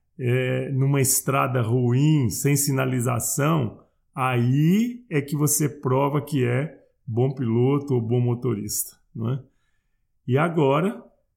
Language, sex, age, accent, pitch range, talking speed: Portuguese, male, 40-59, Brazilian, 125-150 Hz, 115 wpm